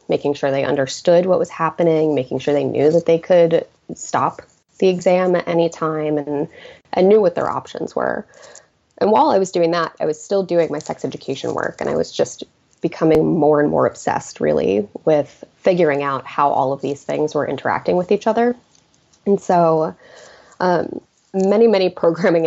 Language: English